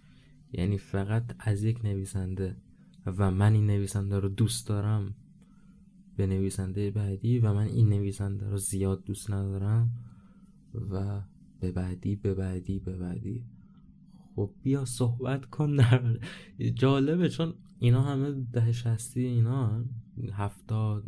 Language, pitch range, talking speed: Persian, 100-135 Hz, 120 wpm